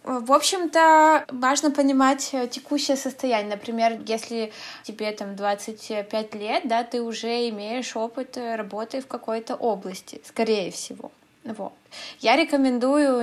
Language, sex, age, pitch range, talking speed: Russian, female, 20-39, 225-270 Hz, 110 wpm